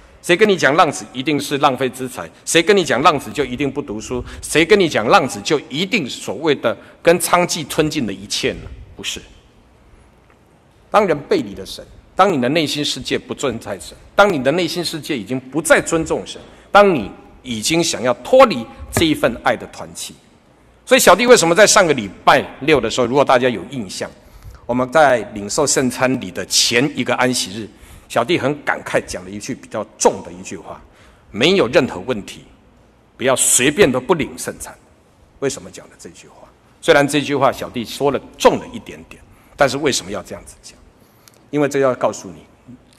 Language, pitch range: Chinese, 120-170 Hz